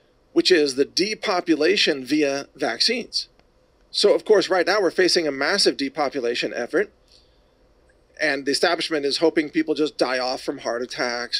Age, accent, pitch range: 40-59, American, 135-205 Hz